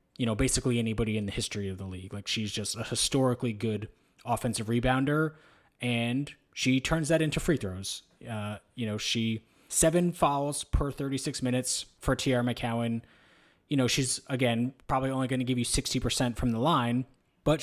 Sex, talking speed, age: male, 175 wpm, 20-39